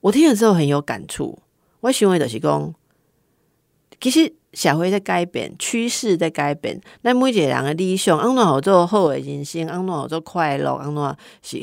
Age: 50-69